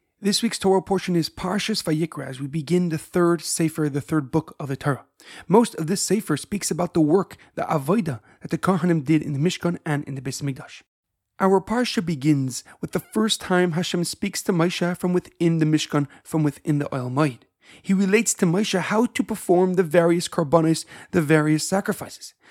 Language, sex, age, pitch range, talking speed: English, male, 40-59, 160-200 Hz, 195 wpm